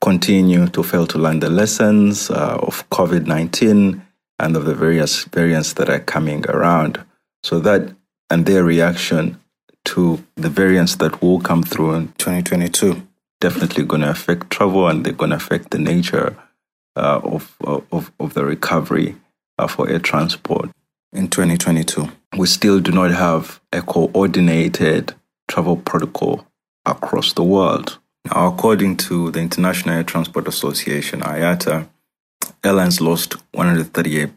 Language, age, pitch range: English, 30-49, 80-95 Hz